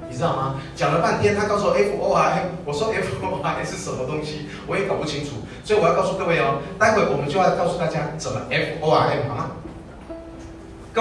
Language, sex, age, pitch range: Chinese, male, 30-49, 155-205 Hz